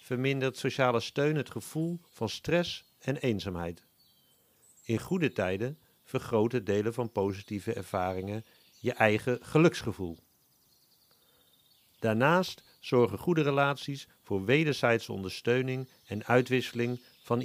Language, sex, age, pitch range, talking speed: Dutch, male, 50-69, 110-145 Hz, 105 wpm